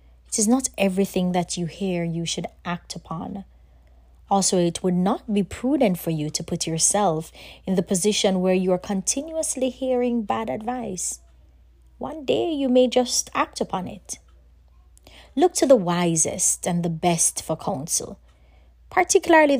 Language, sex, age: English, female, 20-39